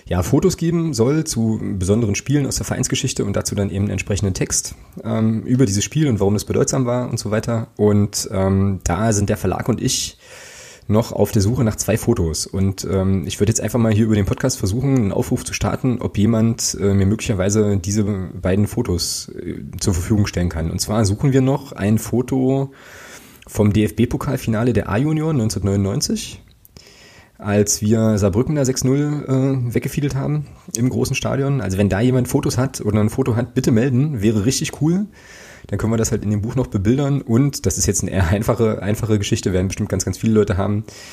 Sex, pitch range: male, 100-125 Hz